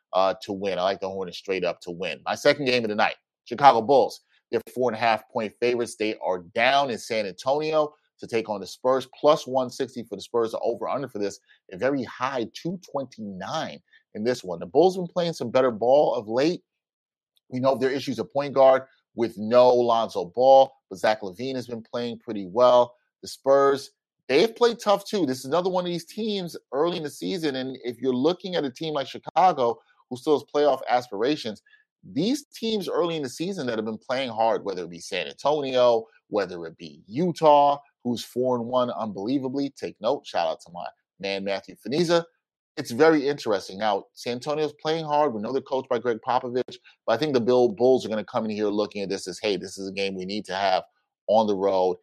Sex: male